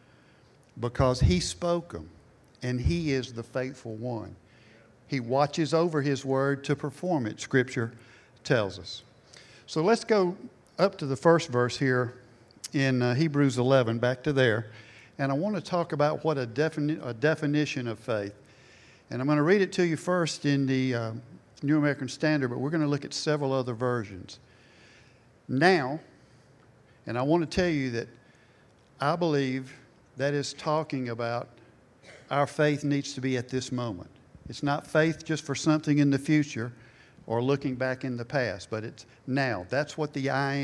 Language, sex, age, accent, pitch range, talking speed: English, male, 60-79, American, 120-150 Hz, 175 wpm